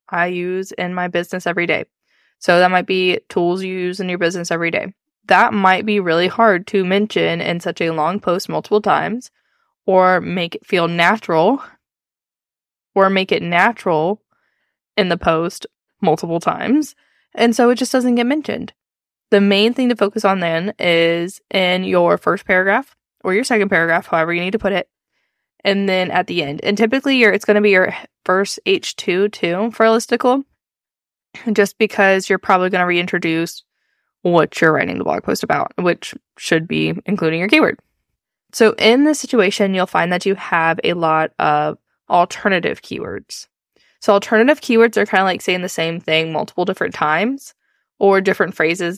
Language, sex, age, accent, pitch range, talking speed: English, female, 10-29, American, 170-215 Hz, 180 wpm